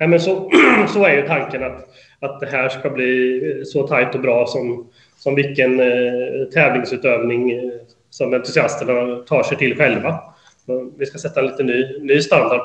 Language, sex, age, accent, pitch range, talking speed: Swedish, male, 30-49, native, 125-145 Hz, 175 wpm